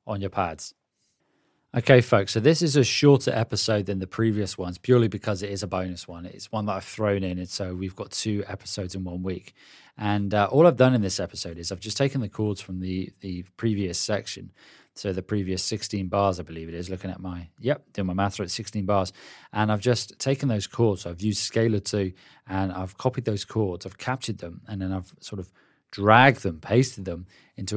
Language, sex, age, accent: English, male, 20-39, British